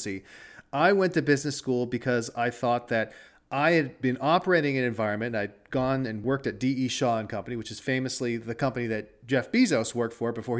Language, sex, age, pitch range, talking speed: English, male, 40-59, 120-155 Hz, 190 wpm